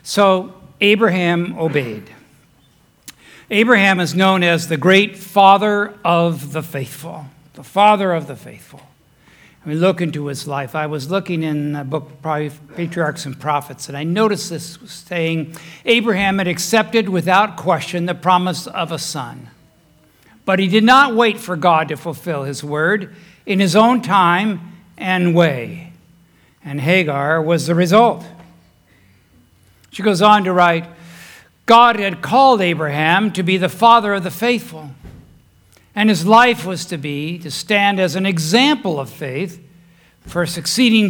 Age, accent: 60-79, American